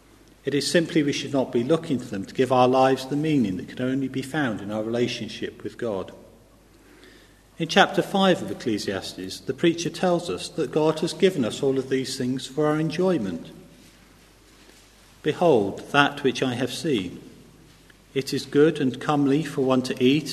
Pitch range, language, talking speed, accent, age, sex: 120-155 Hz, English, 185 wpm, British, 40-59, male